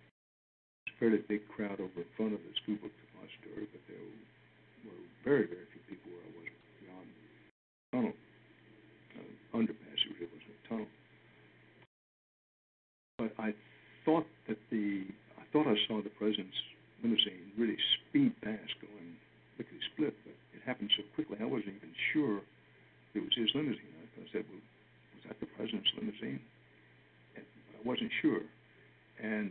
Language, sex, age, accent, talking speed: English, male, 60-79, American, 150 wpm